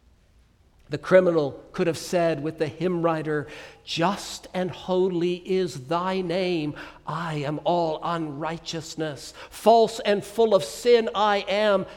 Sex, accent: male, American